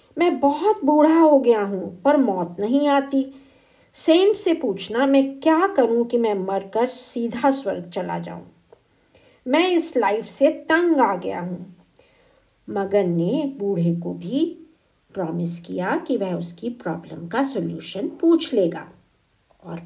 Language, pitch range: Hindi, 195-290 Hz